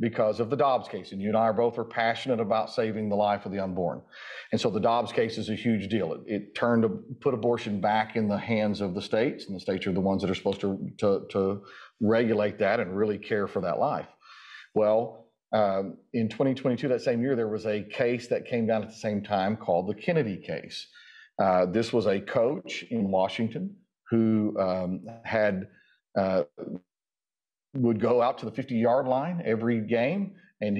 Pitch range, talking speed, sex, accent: 105-130 Hz, 205 wpm, male, American